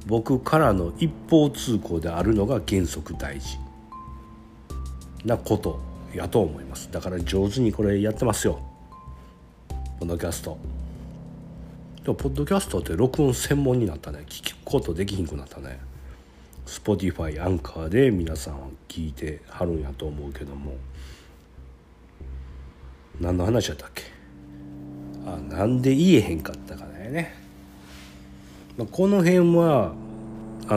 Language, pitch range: Japanese, 70-110 Hz